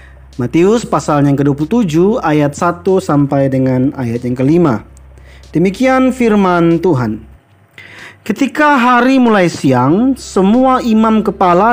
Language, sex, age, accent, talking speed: Indonesian, male, 40-59, native, 105 wpm